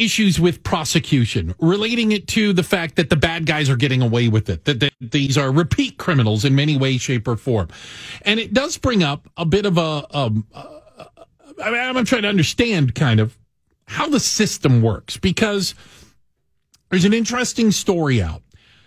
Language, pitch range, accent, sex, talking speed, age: English, 125-200 Hz, American, male, 180 wpm, 40-59